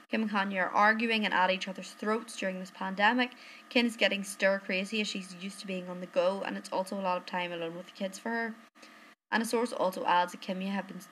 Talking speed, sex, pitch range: 255 wpm, female, 190-245 Hz